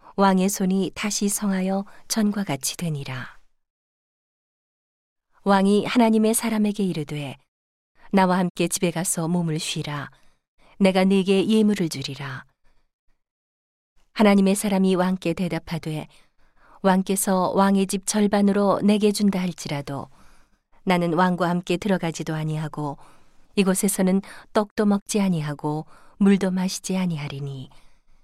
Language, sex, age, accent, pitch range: Korean, female, 40-59, native, 165-205 Hz